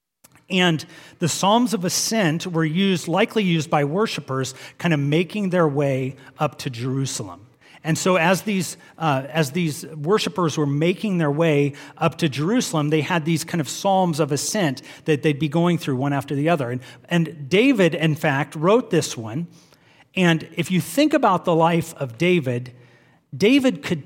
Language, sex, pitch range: English, male, 135-175 Hz